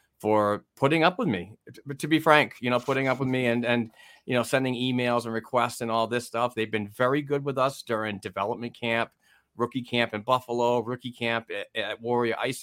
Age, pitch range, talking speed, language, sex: 30-49, 110-125 Hz, 215 wpm, English, male